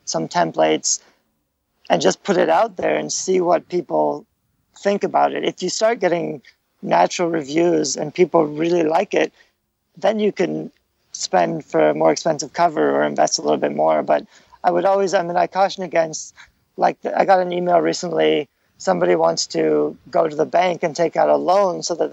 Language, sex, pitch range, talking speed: English, male, 155-190 Hz, 190 wpm